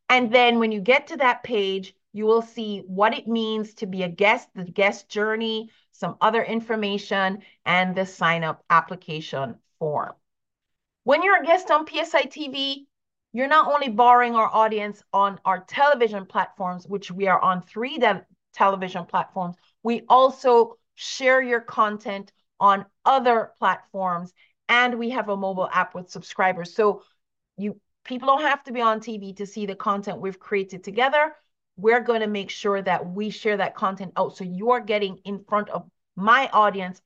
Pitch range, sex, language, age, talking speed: 190-240 Hz, female, English, 40-59, 170 wpm